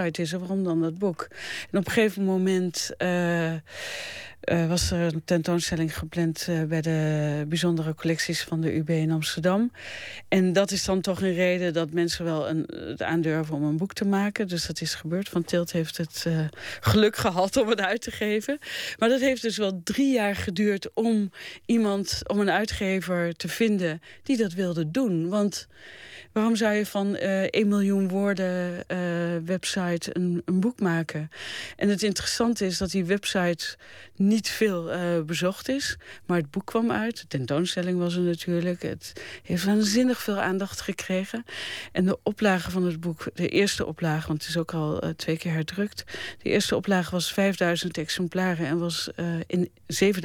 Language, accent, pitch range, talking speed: Dutch, Dutch, 170-205 Hz, 185 wpm